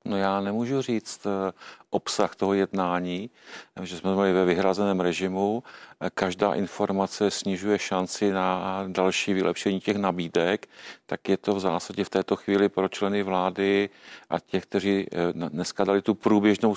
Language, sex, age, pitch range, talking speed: Czech, male, 40-59, 90-100 Hz, 145 wpm